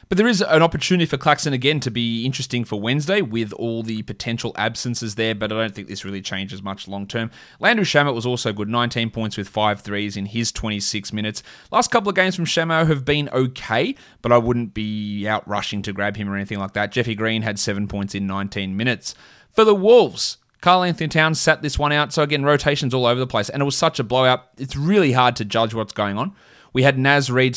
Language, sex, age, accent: English, male, 20-39, Australian